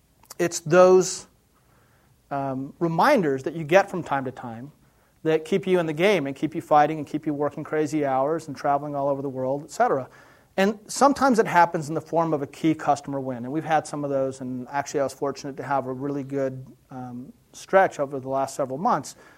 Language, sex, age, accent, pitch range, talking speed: English, male, 30-49, American, 140-170 Hz, 215 wpm